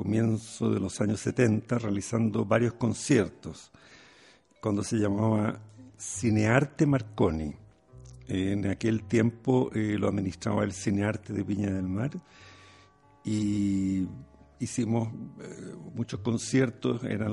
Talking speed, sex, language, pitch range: 110 wpm, male, Spanish, 105-125 Hz